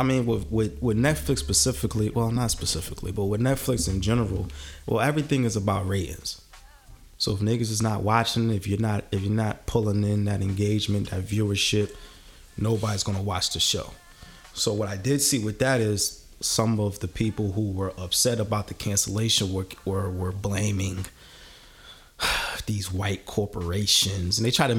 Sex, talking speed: male, 175 wpm